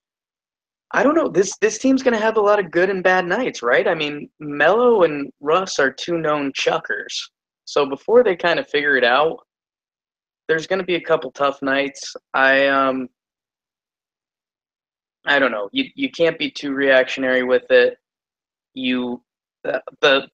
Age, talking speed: 20-39, 170 wpm